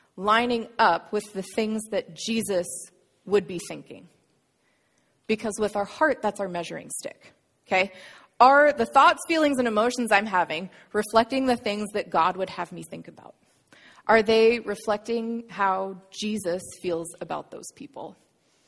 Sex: female